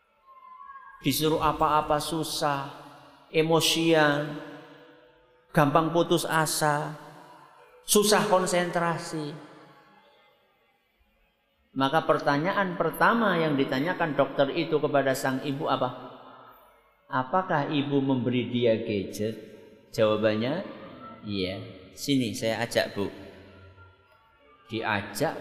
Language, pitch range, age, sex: Malay, 115-160 Hz, 50-69, male